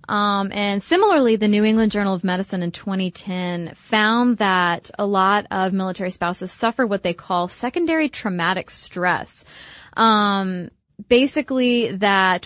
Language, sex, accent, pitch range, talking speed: English, female, American, 180-225 Hz, 135 wpm